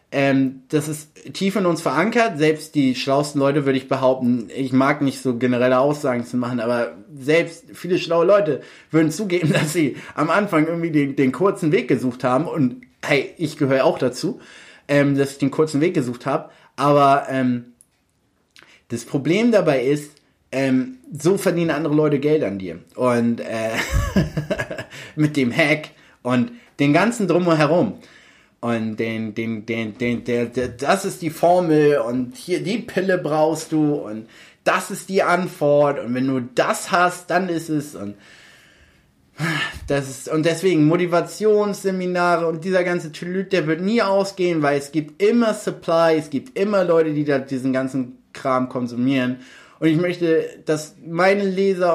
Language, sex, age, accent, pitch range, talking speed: German, male, 30-49, German, 130-170 Hz, 165 wpm